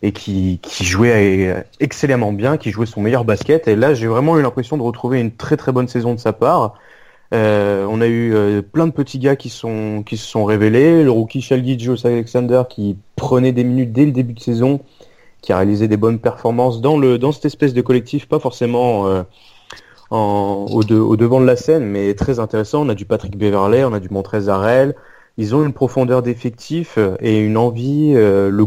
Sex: male